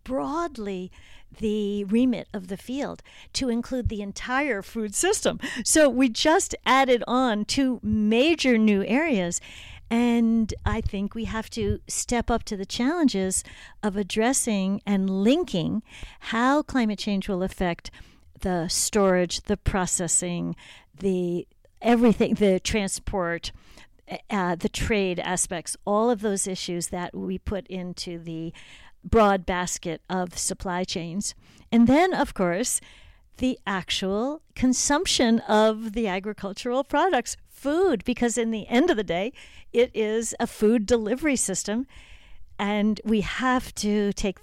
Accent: American